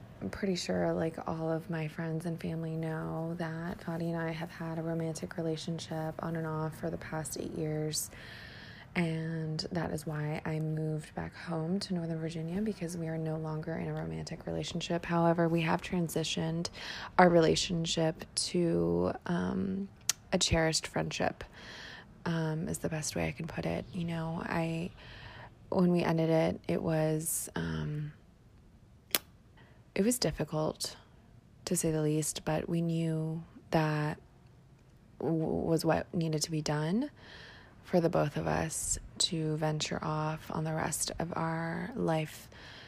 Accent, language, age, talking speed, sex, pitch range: American, English, 20-39, 155 wpm, female, 155-170 Hz